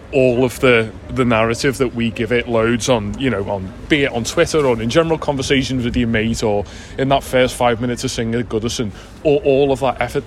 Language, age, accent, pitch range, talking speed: English, 20-39, British, 110-130 Hz, 235 wpm